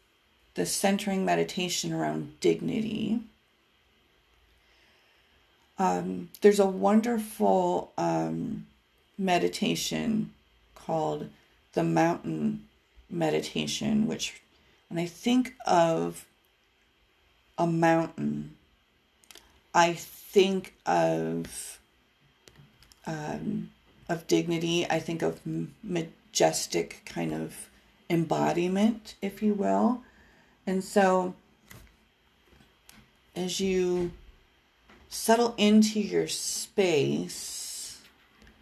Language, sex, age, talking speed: English, female, 40-59, 70 wpm